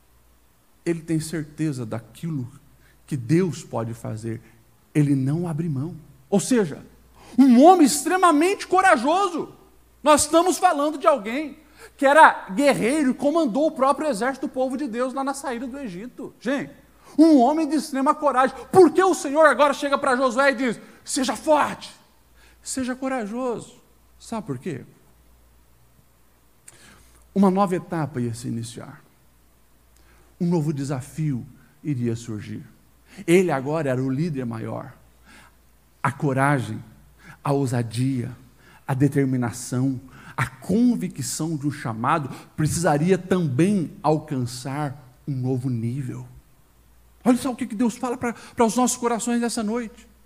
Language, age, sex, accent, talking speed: Portuguese, 50-69, male, Brazilian, 130 wpm